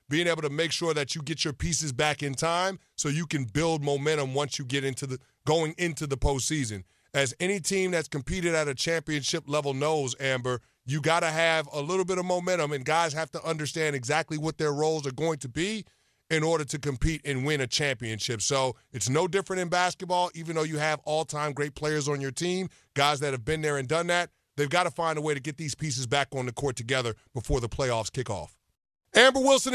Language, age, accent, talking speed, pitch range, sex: English, 30-49, American, 230 wpm, 145-185 Hz, male